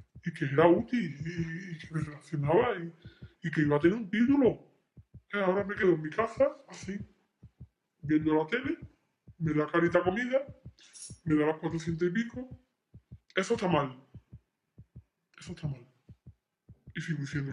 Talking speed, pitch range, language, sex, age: 160 wpm, 160-200 Hz, Spanish, female, 20-39